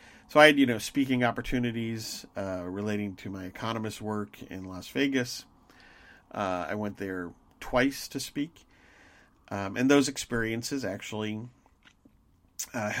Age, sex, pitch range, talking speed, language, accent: 40-59, male, 100-130 Hz, 135 wpm, English, American